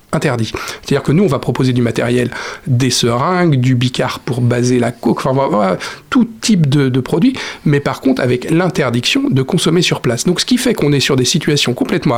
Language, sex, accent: French, male, French